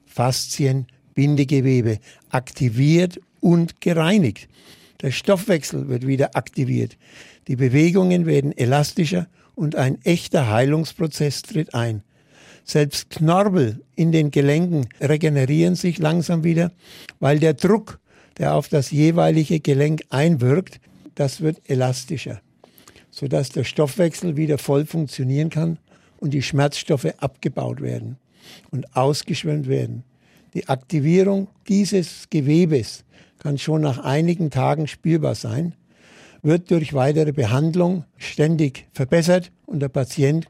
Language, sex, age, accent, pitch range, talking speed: German, male, 60-79, German, 135-165 Hz, 115 wpm